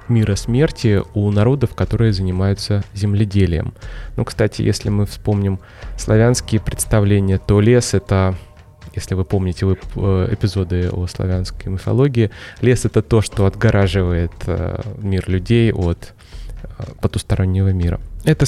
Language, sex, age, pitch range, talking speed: Russian, male, 20-39, 100-125 Hz, 115 wpm